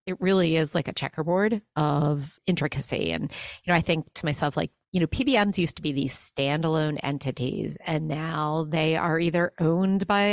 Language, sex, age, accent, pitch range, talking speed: English, female, 40-59, American, 145-180 Hz, 185 wpm